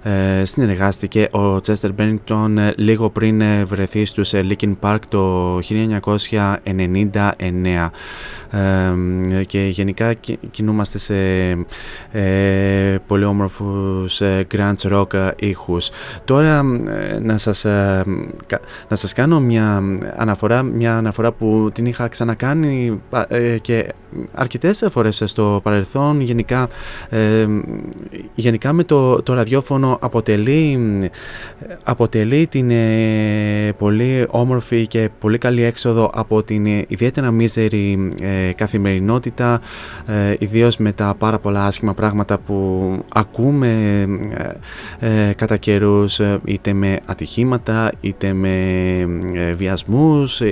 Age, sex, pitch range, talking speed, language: 20-39, male, 100-115 Hz, 105 wpm, Greek